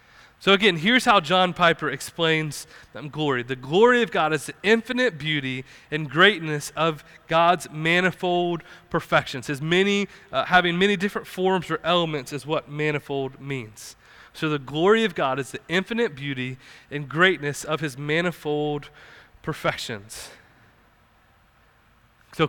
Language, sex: English, male